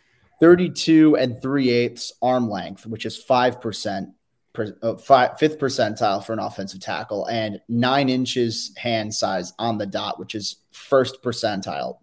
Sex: male